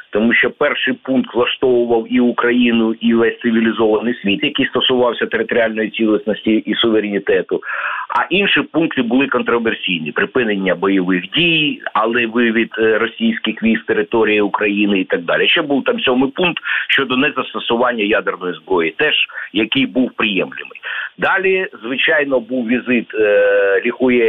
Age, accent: 50-69, native